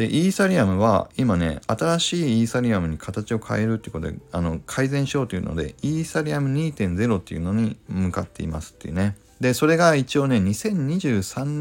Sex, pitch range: male, 90-140 Hz